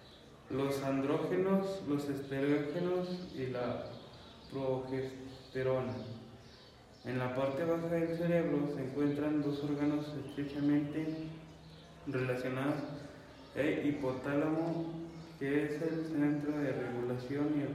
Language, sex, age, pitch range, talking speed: Spanish, male, 20-39, 130-150 Hz, 100 wpm